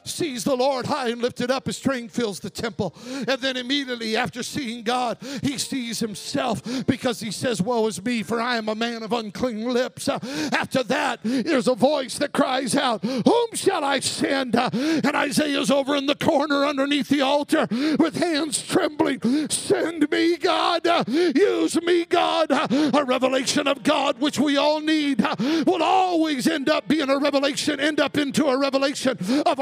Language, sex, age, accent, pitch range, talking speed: English, male, 50-69, American, 265-345 Hz, 175 wpm